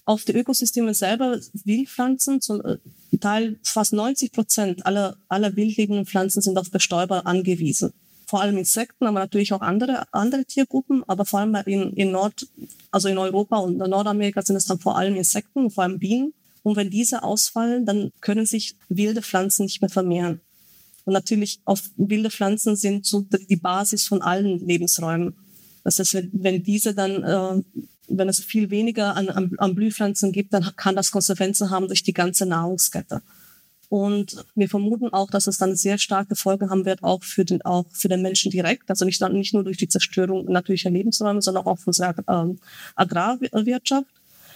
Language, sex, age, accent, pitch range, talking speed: German, female, 30-49, German, 190-210 Hz, 175 wpm